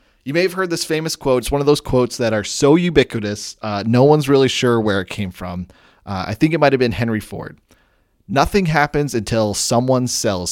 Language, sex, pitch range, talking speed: English, male, 115-140 Hz, 215 wpm